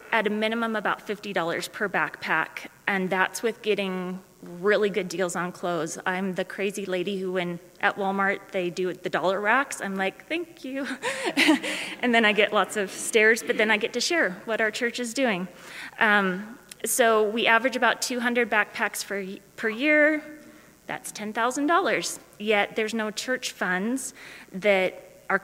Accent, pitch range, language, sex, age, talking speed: American, 190-230 Hz, English, female, 30-49, 165 wpm